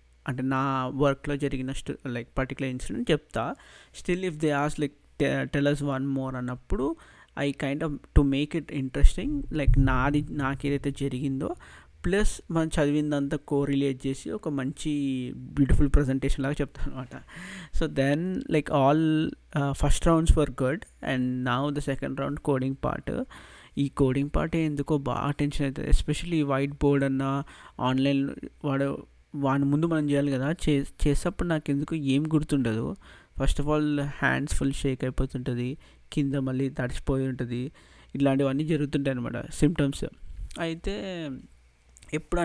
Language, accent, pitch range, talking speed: Telugu, native, 135-145 Hz, 140 wpm